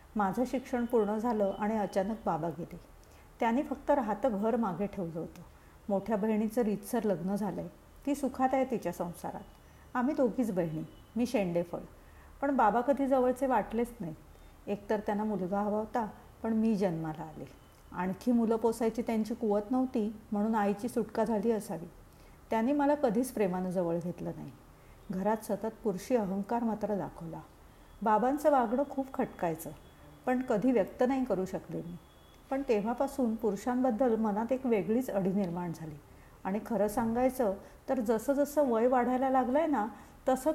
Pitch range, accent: 195-250 Hz, native